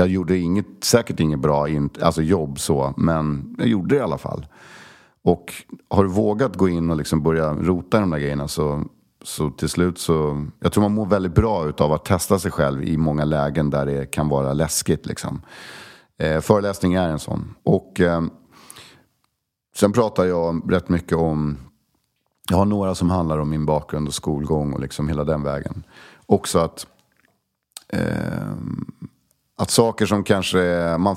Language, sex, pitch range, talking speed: English, male, 75-90 Hz, 170 wpm